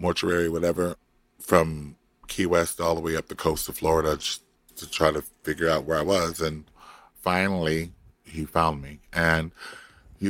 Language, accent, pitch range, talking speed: English, American, 75-85 Hz, 165 wpm